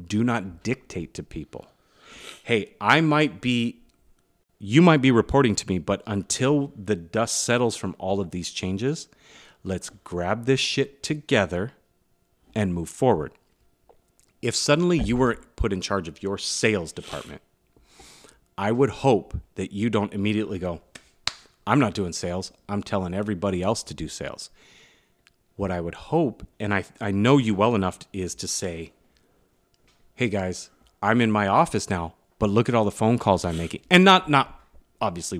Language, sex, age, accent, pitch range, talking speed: English, male, 30-49, American, 90-120 Hz, 165 wpm